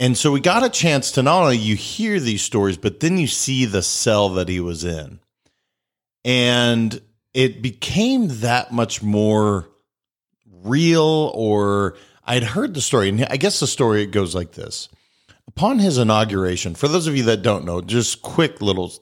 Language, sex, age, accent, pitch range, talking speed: English, male, 40-59, American, 100-130 Hz, 180 wpm